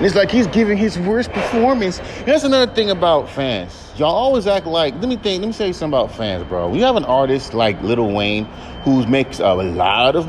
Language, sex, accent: English, male, American